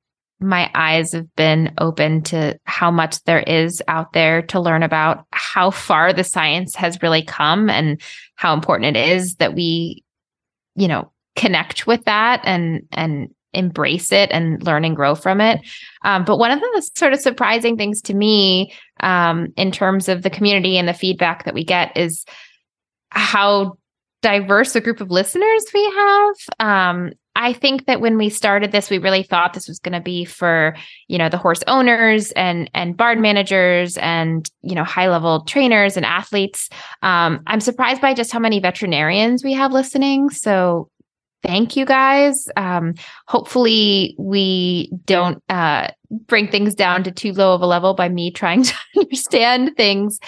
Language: English